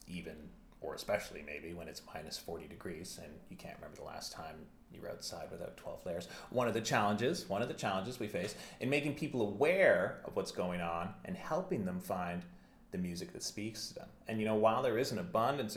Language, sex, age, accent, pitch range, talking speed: English, male, 30-49, American, 100-130 Hz, 220 wpm